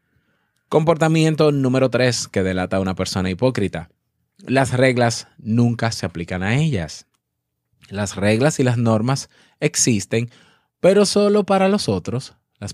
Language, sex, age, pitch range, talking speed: Spanish, male, 20-39, 105-145 Hz, 130 wpm